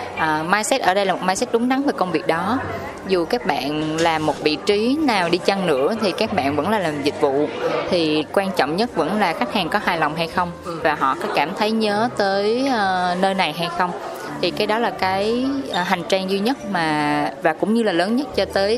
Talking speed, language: 240 wpm, Vietnamese